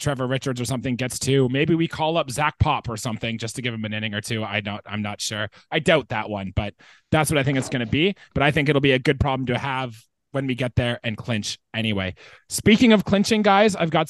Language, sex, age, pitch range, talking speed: English, male, 20-39, 120-165 Hz, 270 wpm